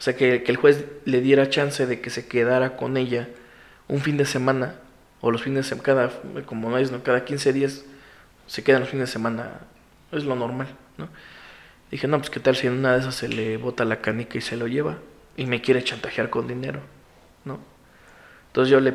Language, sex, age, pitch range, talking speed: Spanish, male, 20-39, 120-140 Hz, 220 wpm